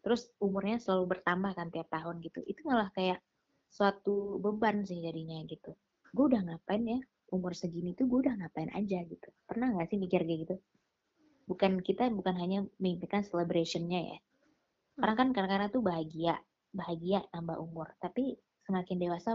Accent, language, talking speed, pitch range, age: native, Indonesian, 160 wpm, 175-220 Hz, 20-39